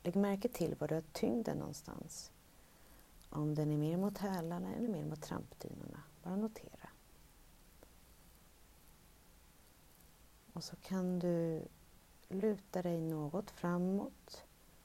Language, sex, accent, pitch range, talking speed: Swedish, female, native, 150-190 Hz, 115 wpm